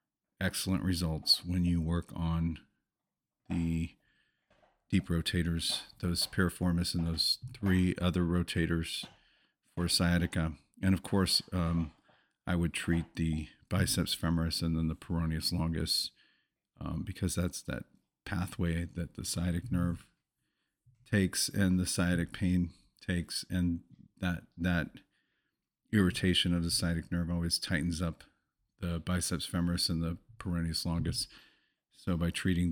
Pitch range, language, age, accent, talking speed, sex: 85-95 Hz, English, 40-59, American, 125 wpm, male